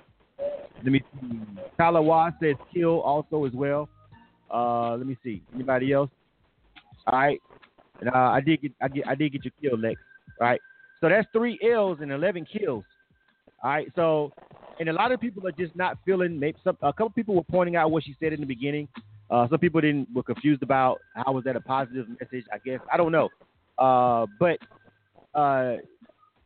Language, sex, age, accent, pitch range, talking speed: English, male, 30-49, American, 125-155 Hz, 195 wpm